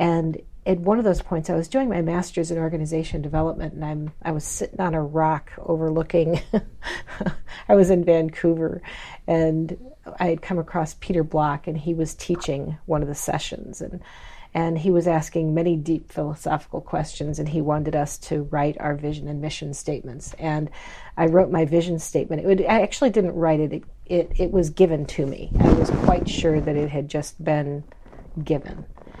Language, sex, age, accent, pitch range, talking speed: English, female, 40-59, American, 155-170 Hz, 190 wpm